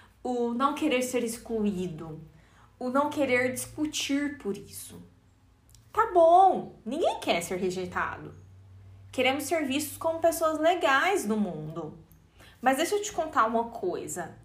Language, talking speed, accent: Portuguese, 135 wpm, Brazilian